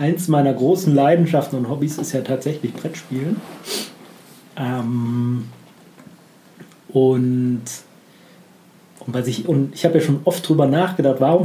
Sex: male